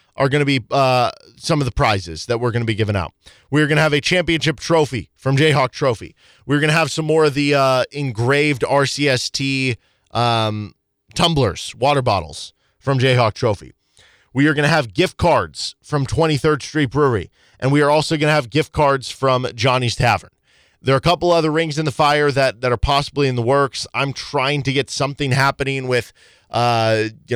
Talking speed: 200 wpm